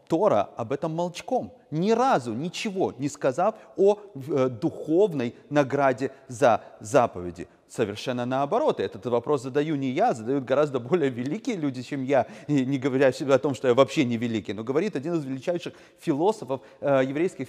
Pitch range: 125-165 Hz